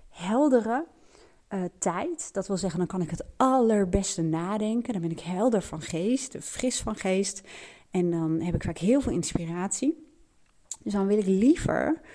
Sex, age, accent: female, 30-49, Dutch